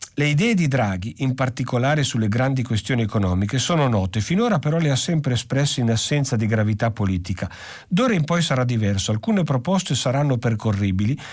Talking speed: 170 wpm